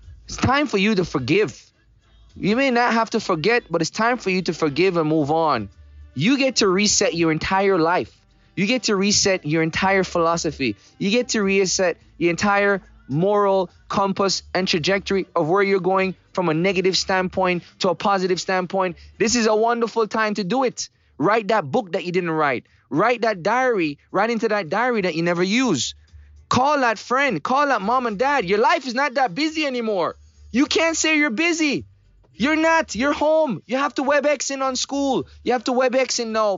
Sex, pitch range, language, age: male, 160-235 Hz, English, 20-39